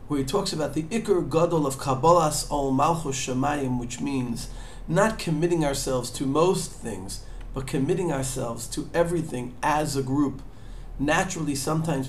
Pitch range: 120-155 Hz